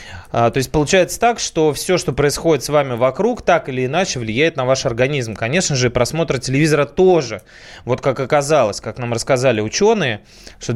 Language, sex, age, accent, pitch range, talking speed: Russian, male, 20-39, native, 120-170 Hz, 175 wpm